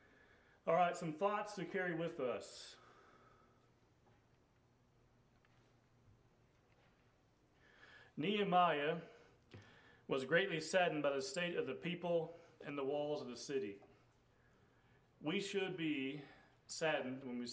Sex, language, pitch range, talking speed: male, English, 130-165 Hz, 105 wpm